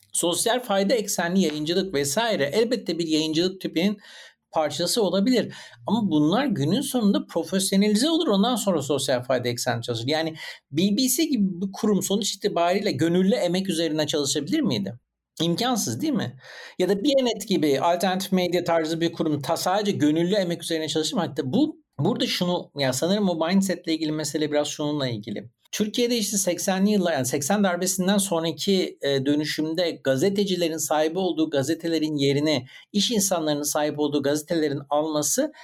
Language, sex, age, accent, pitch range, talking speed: Turkish, male, 60-79, native, 155-210 Hz, 145 wpm